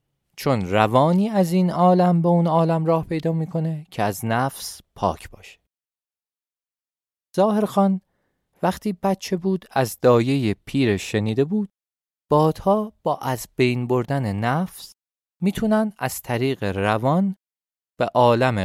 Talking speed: 120 wpm